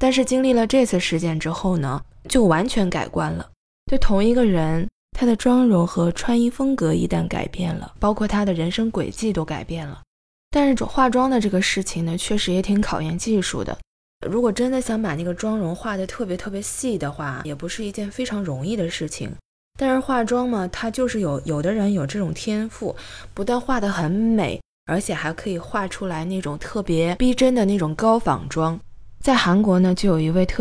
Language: Chinese